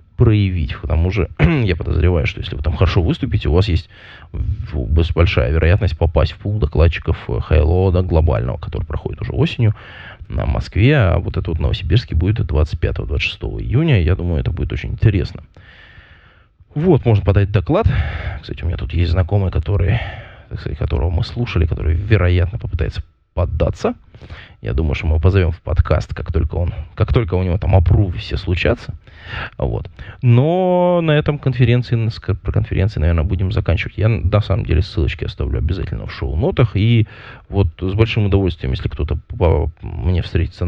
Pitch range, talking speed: 85-110 Hz, 160 wpm